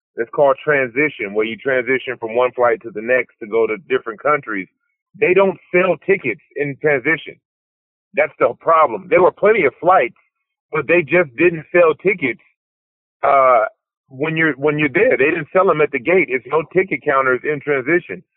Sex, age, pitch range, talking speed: male, 30-49, 135-180 Hz, 180 wpm